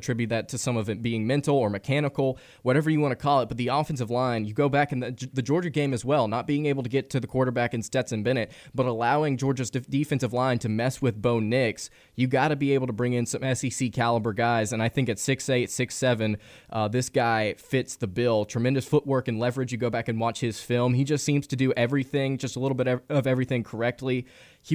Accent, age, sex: American, 20-39, male